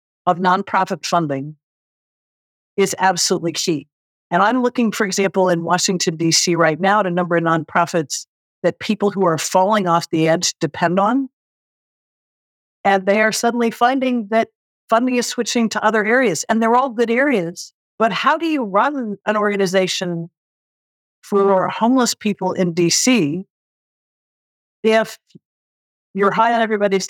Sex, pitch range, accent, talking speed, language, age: female, 180-225 Hz, American, 145 wpm, English, 50-69